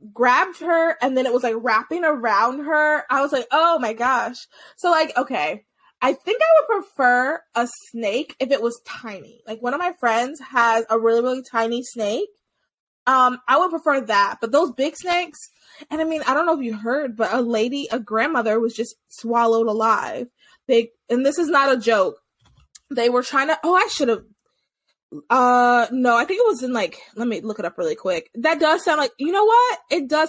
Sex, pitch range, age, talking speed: female, 235-310 Hz, 20-39, 210 wpm